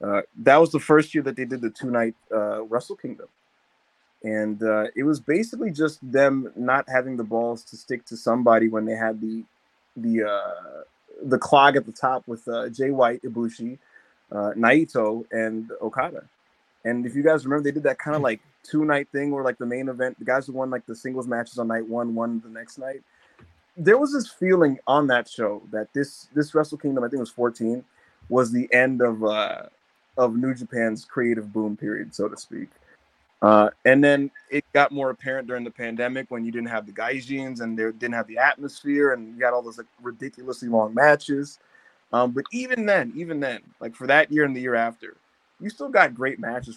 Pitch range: 115-140 Hz